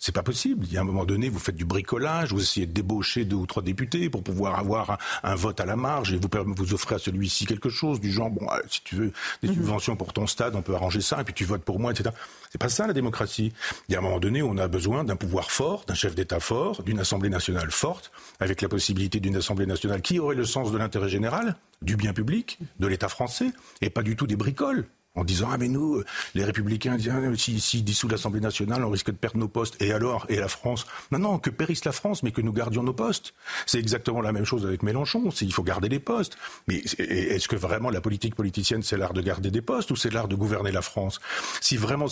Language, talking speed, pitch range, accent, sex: French, 260 wpm, 100-125 Hz, French, male